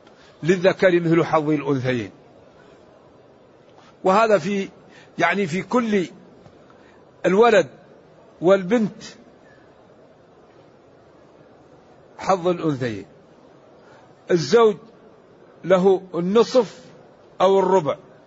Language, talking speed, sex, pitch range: Arabic, 60 wpm, male, 170-200 Hz